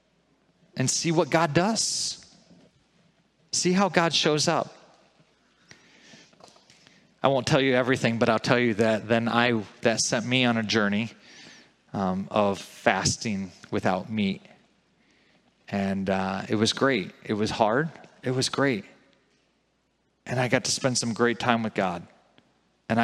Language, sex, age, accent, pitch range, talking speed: English, male, 30-49, American, 115-155 Hz, 145 wpm